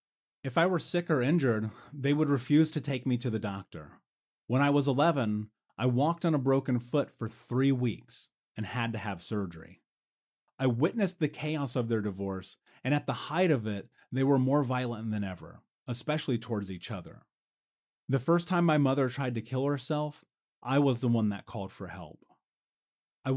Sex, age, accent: male, 30-49, American